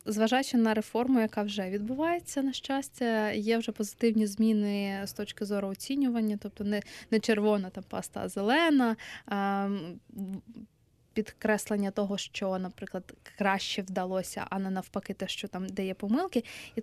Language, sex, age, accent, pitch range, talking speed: Ukrainian, female, 20-39, native, 205-235 Hz, 145 wpm